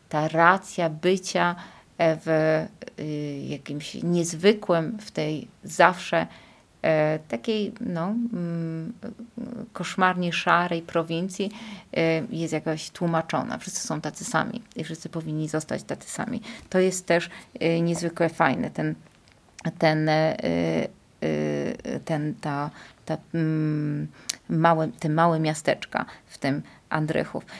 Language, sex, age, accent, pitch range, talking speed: Polish, female, 30-49, native, 155-190 Hz, 95 wpm